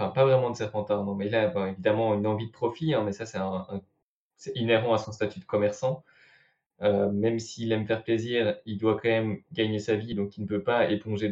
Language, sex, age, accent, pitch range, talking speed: French, male, 20-39, French, 105-115 Hz, 250 wpm